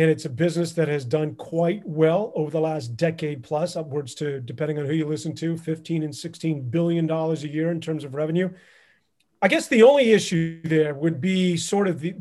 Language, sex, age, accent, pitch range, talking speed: English, male, 40-59, American, 155-180 Hz, 210 wpm